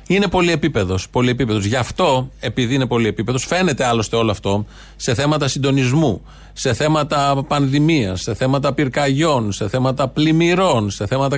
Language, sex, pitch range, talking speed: Greek, male, 120-170 Hz, 135 wpm